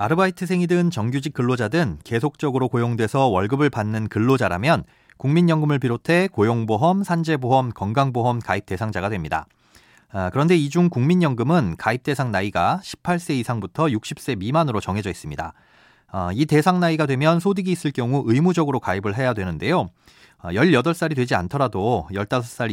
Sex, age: male, 30-49